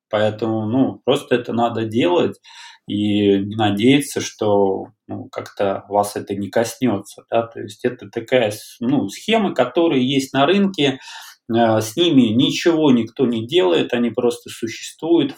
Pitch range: 110-130 Hz